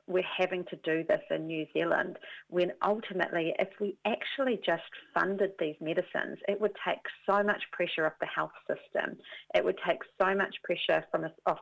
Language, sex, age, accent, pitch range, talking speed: English, female, 40-59, Australian, 165-205 Hz, 180 wpm